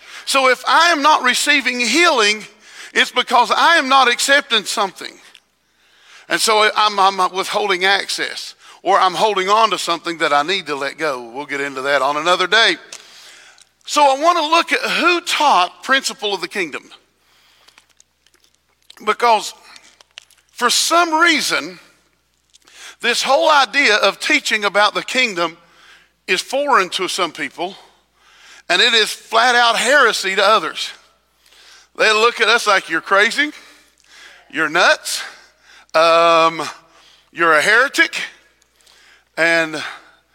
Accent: American